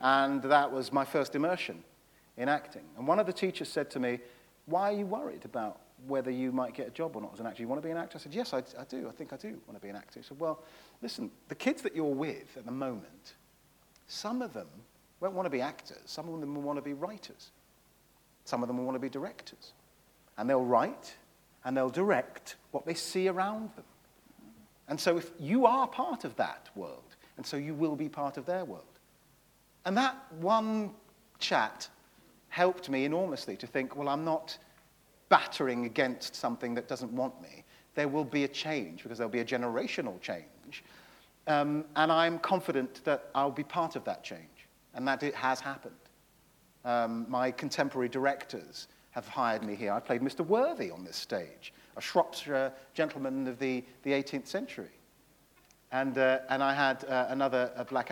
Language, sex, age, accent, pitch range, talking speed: English, male, 40-59, British, 130-165 Hz, 205 wpm